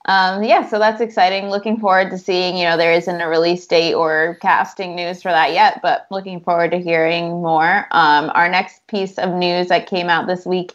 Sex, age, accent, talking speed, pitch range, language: female, 20-39, American, 210 wpm, 175-210 Hz, English